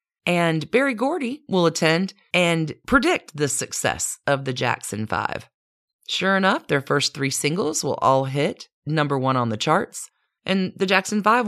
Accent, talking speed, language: American, 160 wpm, English